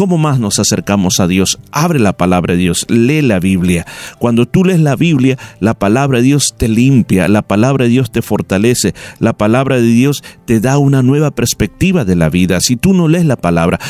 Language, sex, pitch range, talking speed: Spanish, male, 110-150 Hz, 210 wpm